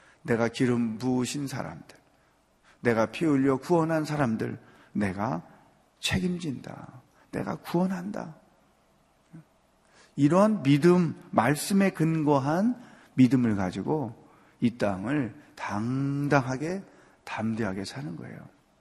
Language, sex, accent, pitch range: Korean, male, native, 130-185 Hz